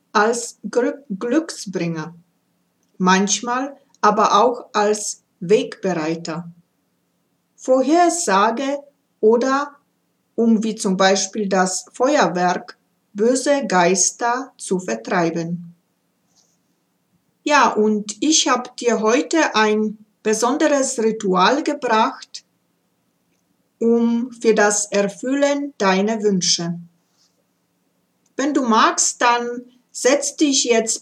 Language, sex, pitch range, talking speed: German, female, 205-260 Hz, 80 wpm